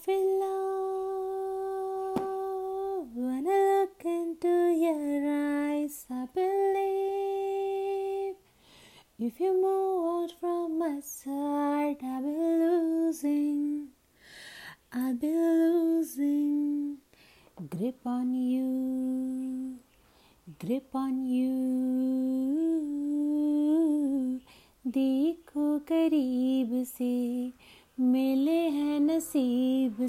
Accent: native